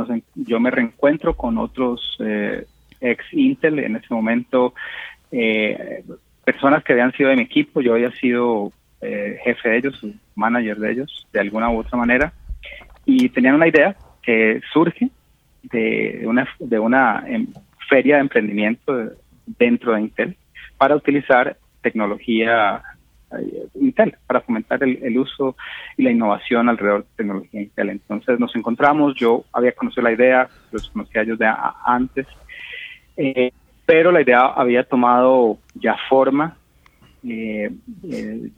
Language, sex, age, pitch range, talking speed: English, male, 30-49, 110-165 Hz, 145 wpm